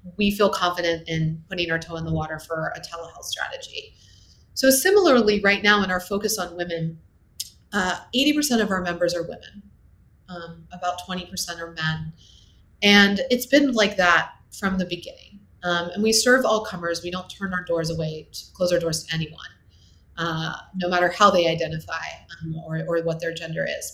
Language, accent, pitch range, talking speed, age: English, American, 165-200 Hz, 185 wpm, 30-49